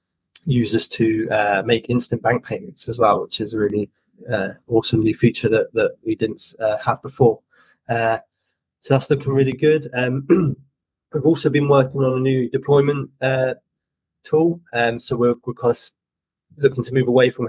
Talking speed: 185 wpm